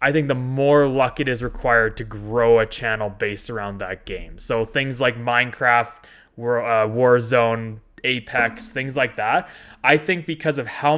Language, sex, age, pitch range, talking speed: English, male, 20-39, 115-150 Hz, 165 wpm